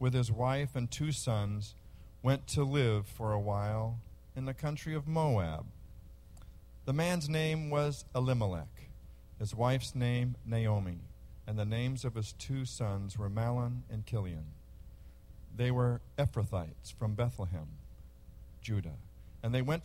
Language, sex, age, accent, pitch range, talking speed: English, male, 50-69, American, 95-125 Hz, 140 wpm